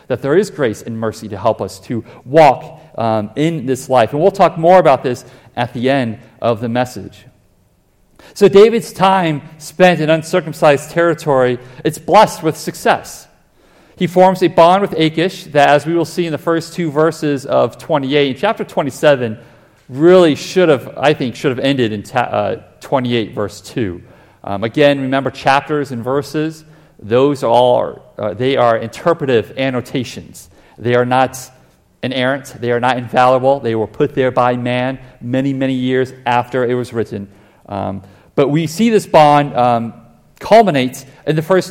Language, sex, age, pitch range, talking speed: English, male, 40-59, 125-165 Hz, 170 wpm